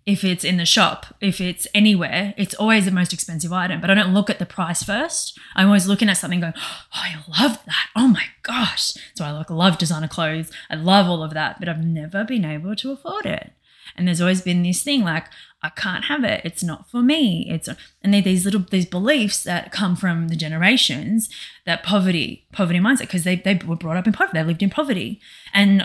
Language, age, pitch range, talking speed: English, 20-39, 180-220 Hz, 225 wpm